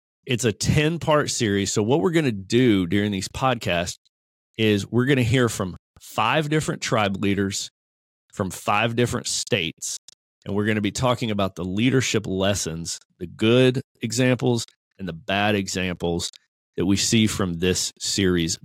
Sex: male